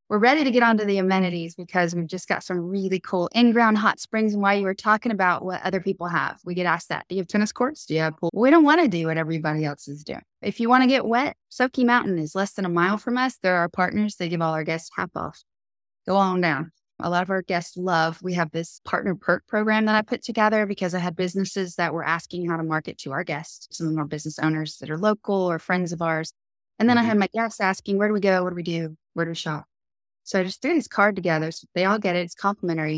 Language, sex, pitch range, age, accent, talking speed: English, female, 165-195 Hz, 20-39, American, 275 wpm